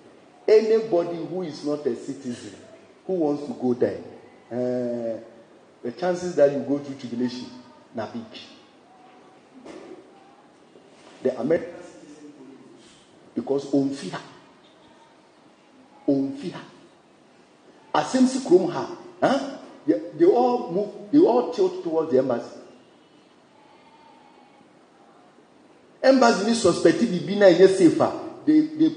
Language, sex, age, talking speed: English, male, 50-69, 90 wpm